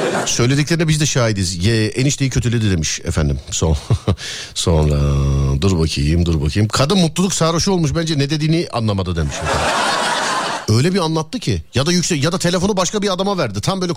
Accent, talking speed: native, 175 wpm